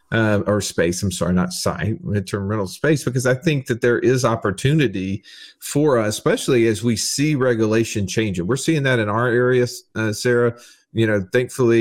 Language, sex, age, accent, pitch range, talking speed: English, male, 40-59, American, 100-125 Hz, 180 wpm